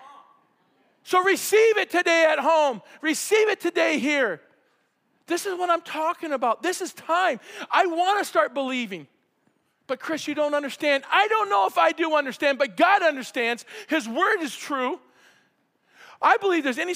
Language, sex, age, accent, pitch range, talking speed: English, male, 50-69, American, 230-310 Hz, 165 wpm